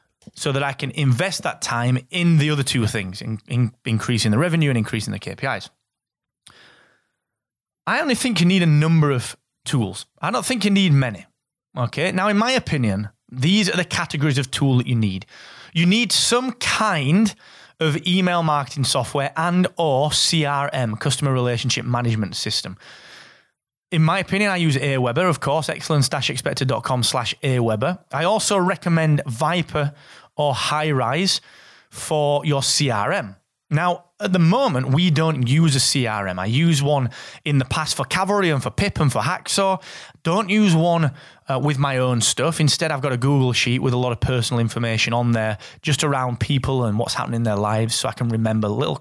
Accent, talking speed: British, 180 wpm